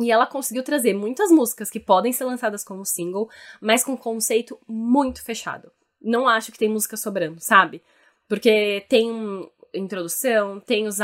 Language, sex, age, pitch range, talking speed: Portuguese, female, 10-29, 195-235 Hz, 165 wpm